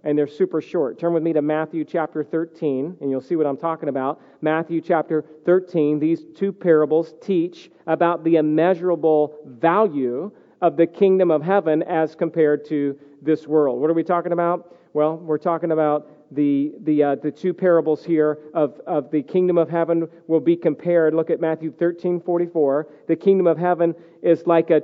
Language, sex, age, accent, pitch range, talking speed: English, male, 40-59, American, 160-195 Hz, 180 wpm